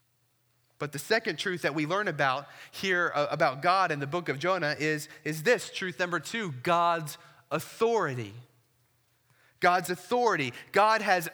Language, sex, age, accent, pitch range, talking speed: English, male, 20-39, American, 125-180 Hz, 150 wpm